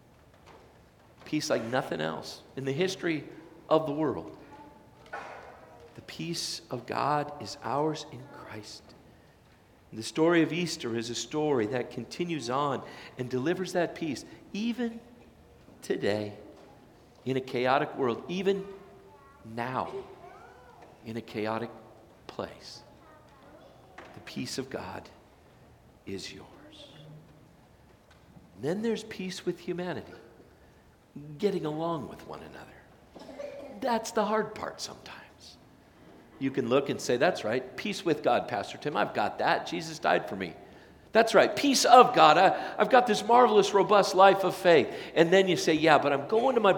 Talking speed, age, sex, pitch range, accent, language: 135 wpm, 50-69, male, 125-190 Hz, American, English